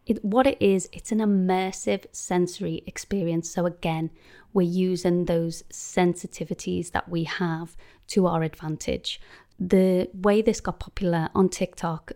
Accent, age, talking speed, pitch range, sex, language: British, 30-49, 135 wpm, 165-190 Hz, female, English